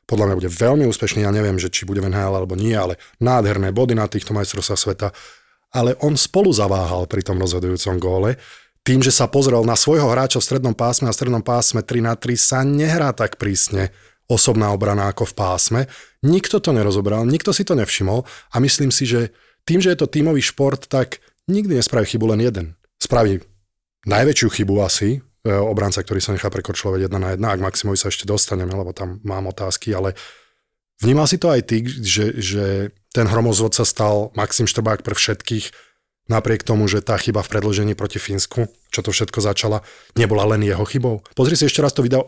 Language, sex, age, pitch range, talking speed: Slovak, male, 20-39, 100-125 Hz, 195 wpm